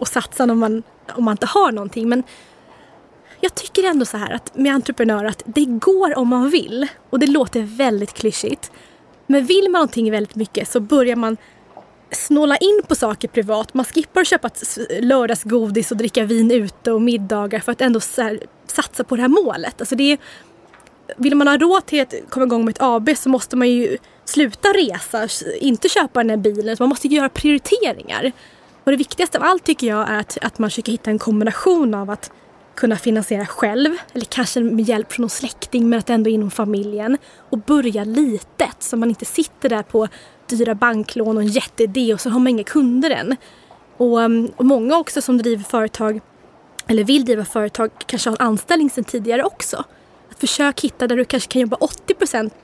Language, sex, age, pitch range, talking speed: Swedish, female, 20-39, 225-275 Hz, 195 wpm